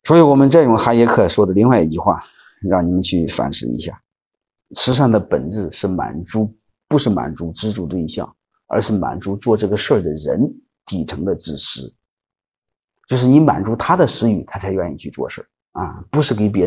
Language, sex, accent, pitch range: Chinese, male, native, 100-135 Hz